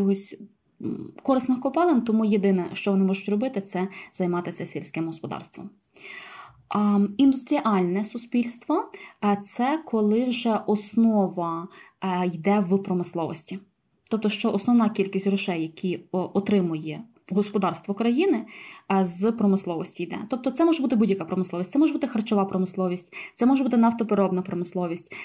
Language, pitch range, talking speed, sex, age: Ukrainian, 185-225 Hz, 120 wpm, female, 20-39